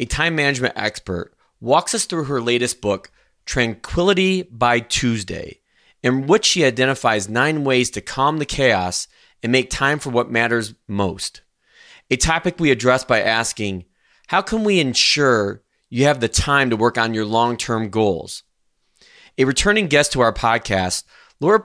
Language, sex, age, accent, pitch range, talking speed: English, male, 30-49, American, 115-140 Hz, 160 wpm